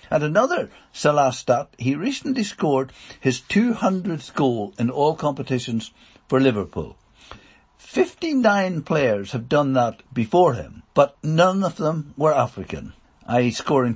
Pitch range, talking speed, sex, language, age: 130-180 Hz, 130 wpm, male, English, 60-79